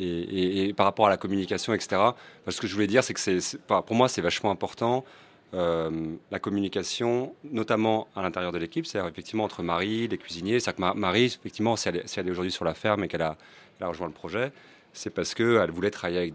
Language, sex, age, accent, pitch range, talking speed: French, male, 30-49, French, 85-105 Hz, 235 wpm